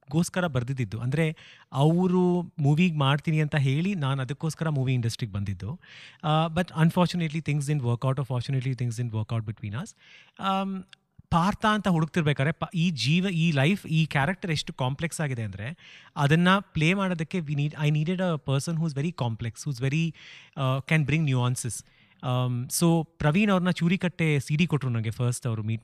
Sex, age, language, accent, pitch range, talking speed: male, 30-49, Kannada, native, 130-165 Hz, 155 wpm